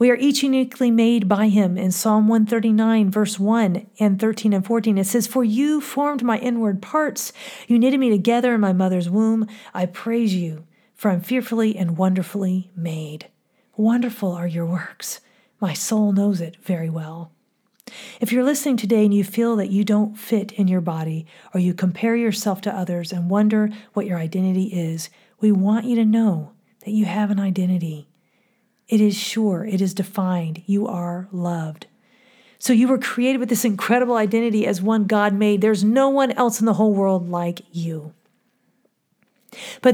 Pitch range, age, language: 185-235 Hz, 40-59, English